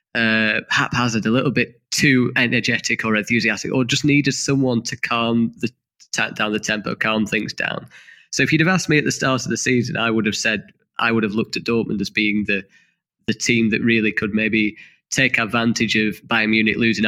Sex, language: male, English